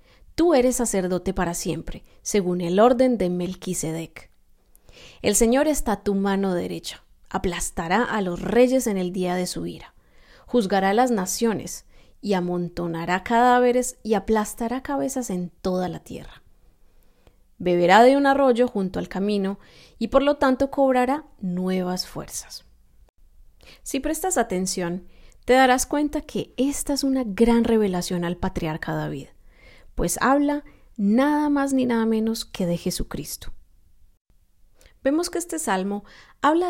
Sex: female